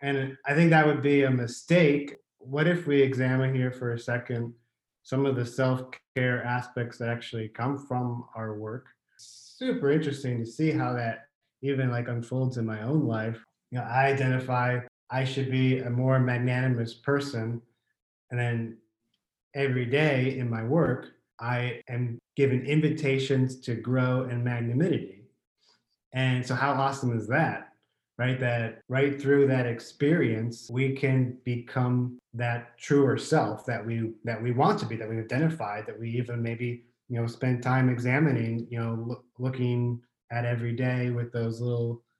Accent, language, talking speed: American, English, 160 wpm